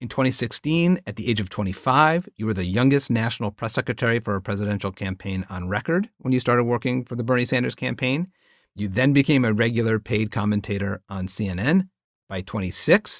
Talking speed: 180 wpm